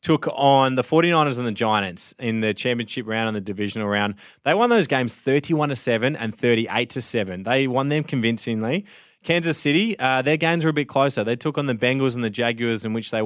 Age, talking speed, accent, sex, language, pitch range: 20-39, 225 wpm, Australian, male, English, 115-140 Hz